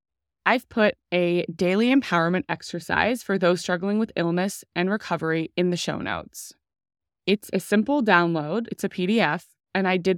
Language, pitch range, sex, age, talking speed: English, 170-215 Hz, female, 20-39, 160 wpm